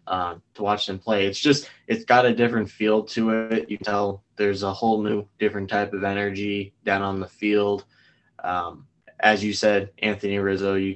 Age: 10-29